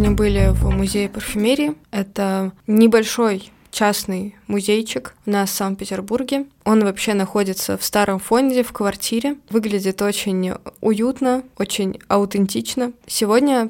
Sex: female